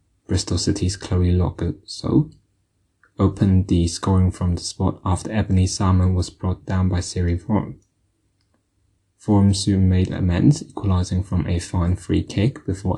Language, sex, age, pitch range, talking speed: English, male, 10-29, 90-100 Hz, 140 wpm